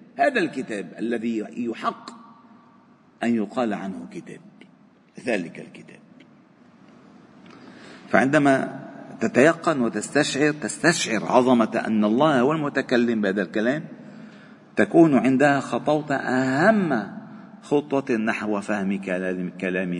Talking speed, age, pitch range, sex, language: 85 wpm, 50-69, 125-205 Hz, male, Arabic